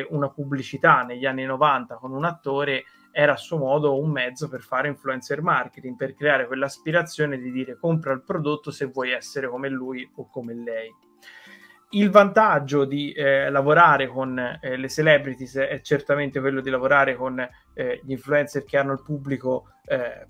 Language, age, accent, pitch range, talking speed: Italian, 20-39, native, 130-155 Hz, 170 wpm